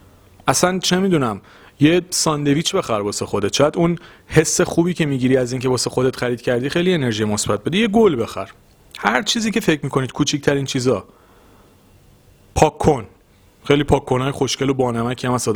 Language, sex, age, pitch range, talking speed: Persian, male, 40-59, 105-155 Hz, 175 wpm